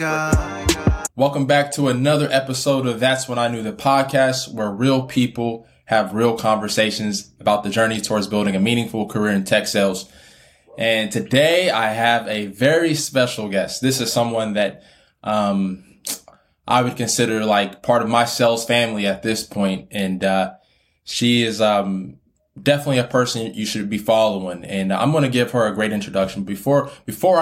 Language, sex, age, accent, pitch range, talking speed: English, male, 20-39, American, 100-125 Hz, 170 wpm